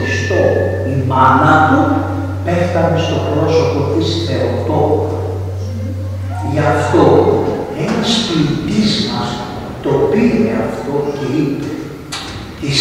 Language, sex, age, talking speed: Greek, male, 60-79, 90 wpm